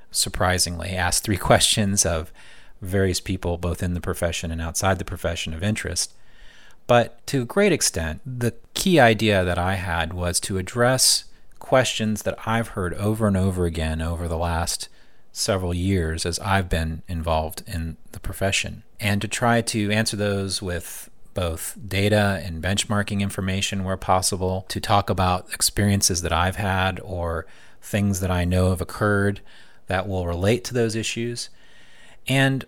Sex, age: male, 30-49